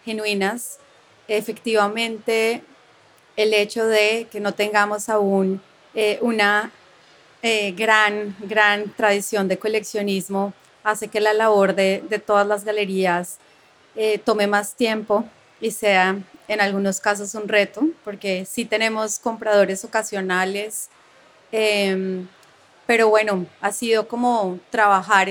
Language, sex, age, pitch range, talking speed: English, female, 30-49, 200-225 Hz, 115 wpm